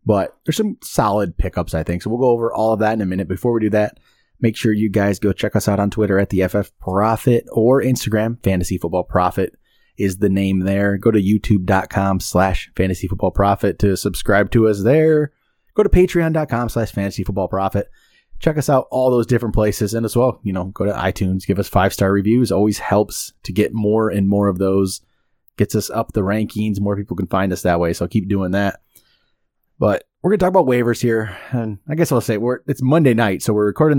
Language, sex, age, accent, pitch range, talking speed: English, male, 30-49, American, 95-115 Hz, 225 wpm